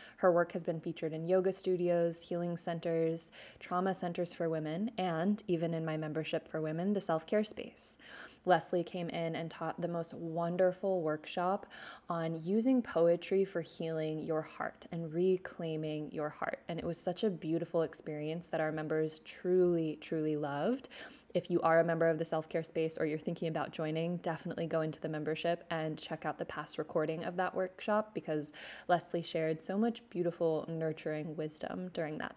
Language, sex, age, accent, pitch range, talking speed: English, female, 20-39, American, 160-185 Hz, 175 wpm